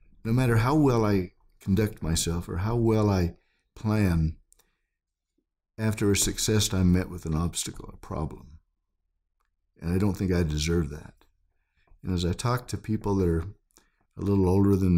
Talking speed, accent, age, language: 165 wpm, American, 60-79, English